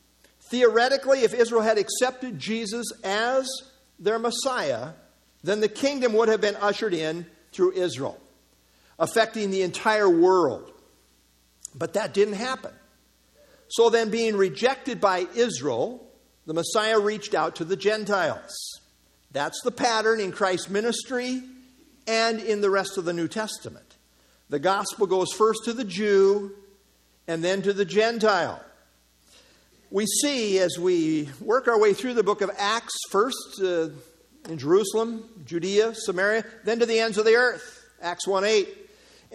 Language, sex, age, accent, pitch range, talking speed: English, male, 50-69, American, 190-240 Hz, 140 wpm